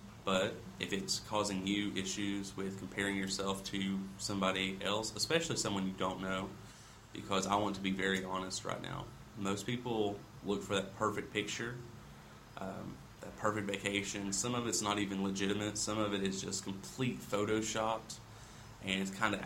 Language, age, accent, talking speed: English, 30-49, American, 165 wpm